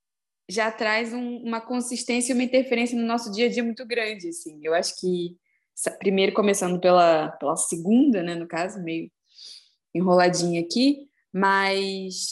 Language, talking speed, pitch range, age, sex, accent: Portuguese, 140 wpm, 190-240 Hz, 20-39, female, Brazilian